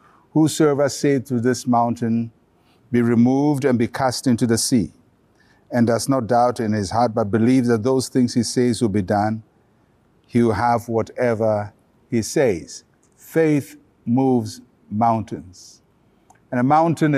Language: English